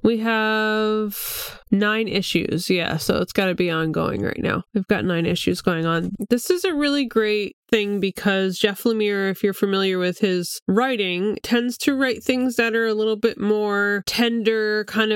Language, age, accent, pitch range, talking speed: English, 20-39, American, 185-225 Hz, 180 wpm